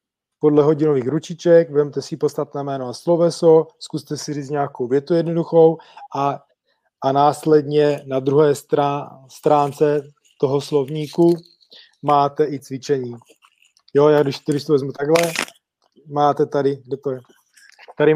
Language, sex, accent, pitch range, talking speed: Czech, male, native, 140-150 Hz, 130 wpm